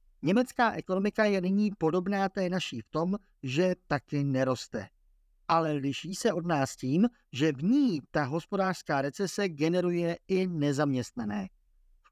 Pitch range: 135-185 Hz